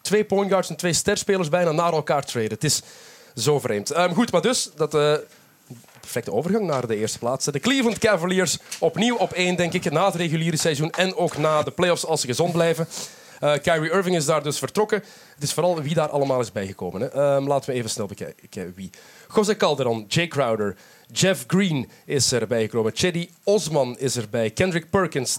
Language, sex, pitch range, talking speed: Dutch, male, 135-185 Hz, 200 wpm